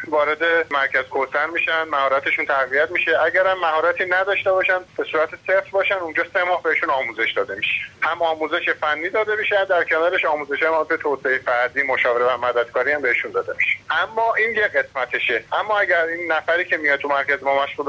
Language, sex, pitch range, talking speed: Persian, male, 140-190 Hz, 185 wpm